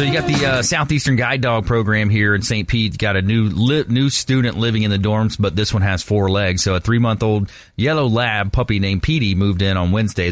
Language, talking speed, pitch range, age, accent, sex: English, 250 wpm, 95-115 Hz, 30-49, American, male